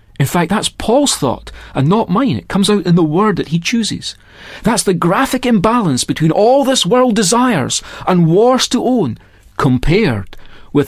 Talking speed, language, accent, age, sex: 175 wpm, English, British, 40-59, male